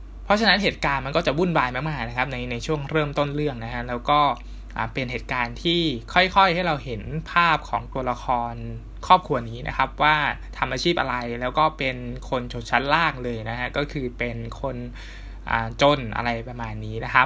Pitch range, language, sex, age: 120-155 Hz, Thai, male, 20-39